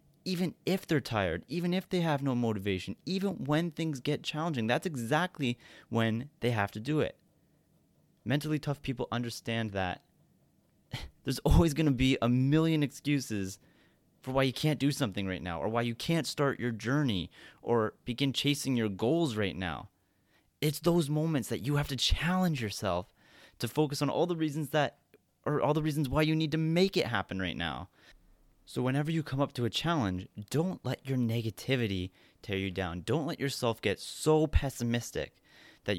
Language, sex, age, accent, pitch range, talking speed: English, male, 30-49, American, 105-150 Hz, 180 wpm